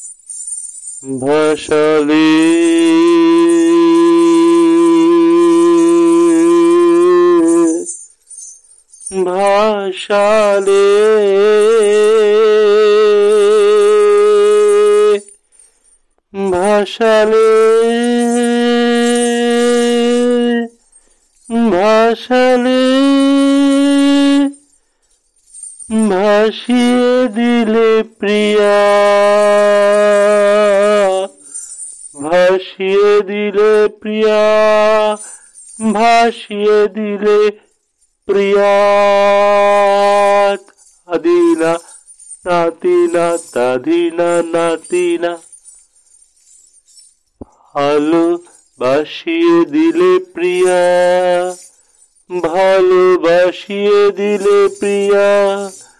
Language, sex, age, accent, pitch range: Bengali, male, 50-69, native, 200-335 Hz